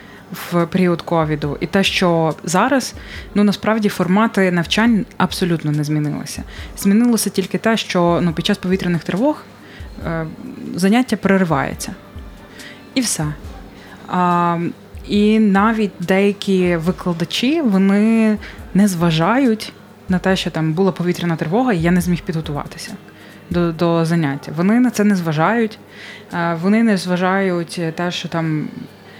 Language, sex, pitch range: Ukrainian, female, 165-205 Hz